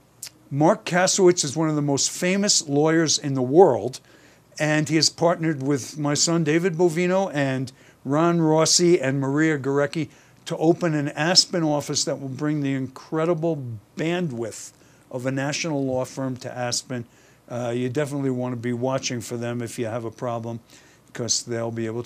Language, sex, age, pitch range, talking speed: English, male, 60-79, 135-175 Hz, 170 wpm